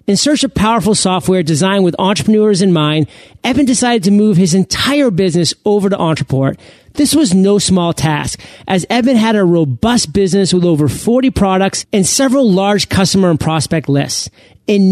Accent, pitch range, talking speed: American, 160-215 Hz, 175 wpm